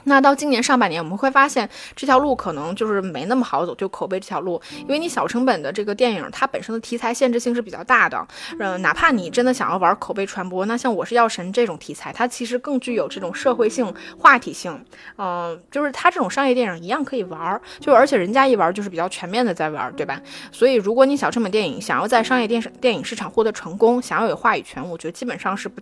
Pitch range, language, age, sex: 195-255 Hz, Chinese, 20-39, female